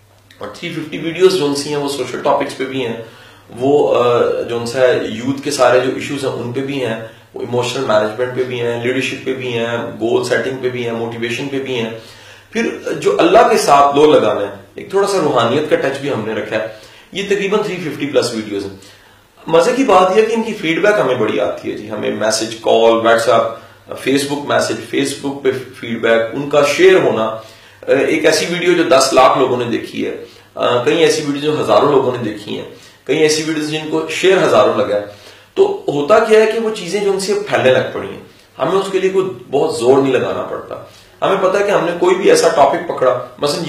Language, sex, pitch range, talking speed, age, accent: English, male, 120-185 Hz, 150 wpm, 30-49, Indian